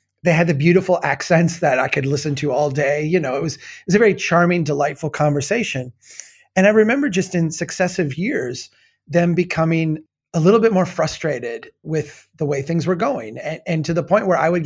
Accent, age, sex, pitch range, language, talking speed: American, 30-49, male, 140-185 Hz, English, 210 wpm